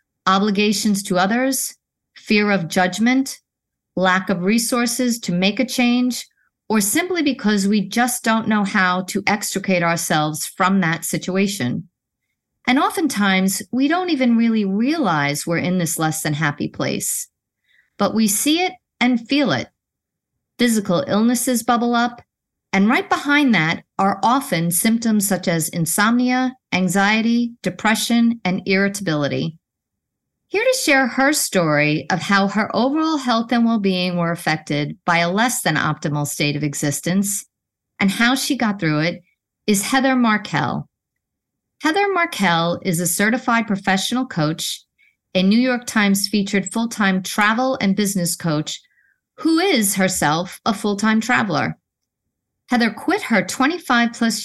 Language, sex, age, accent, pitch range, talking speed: English, female, 40-59, American, 180-245 Hz, 140 wpm